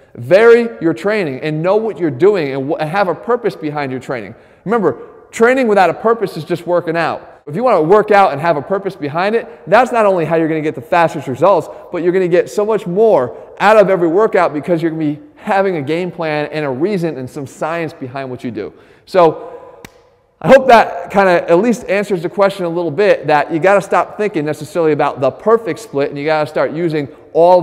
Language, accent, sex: English, American, male